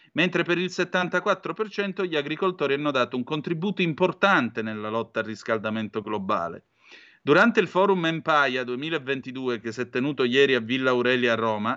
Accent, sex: native, male